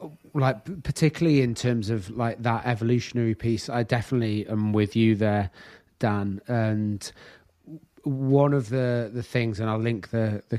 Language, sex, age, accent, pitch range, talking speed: English, male, 30-49, British, 110-125 Hz, 155 wpm